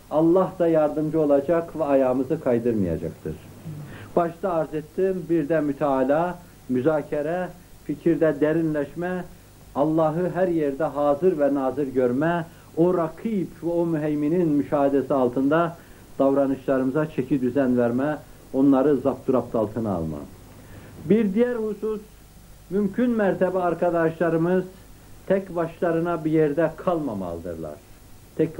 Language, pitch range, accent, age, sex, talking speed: Turkish, 135-185 Hz, native, 60-79, male, 105 wpm